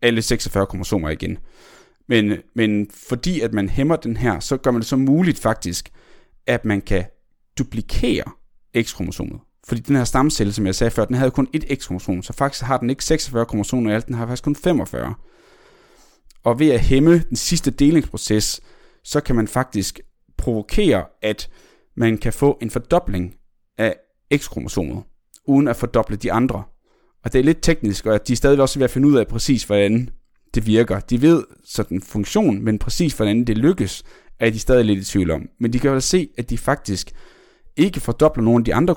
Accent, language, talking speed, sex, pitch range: native, Danish, 195 wpm, male, 105-135 Hz